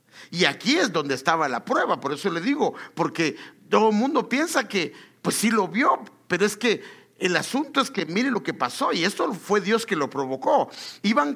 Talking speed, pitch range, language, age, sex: 210 wpm, 170-260 Hz, English, 50-69, male